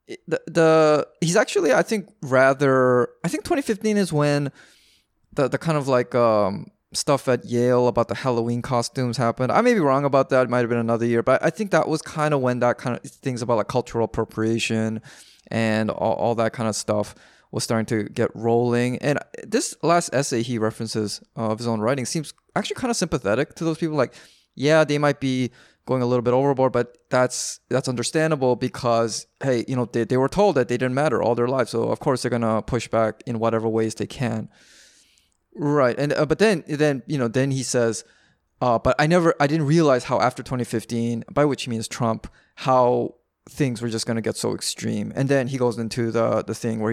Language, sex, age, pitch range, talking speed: English, male, 20-39, 115-145 Hz, 215 wpm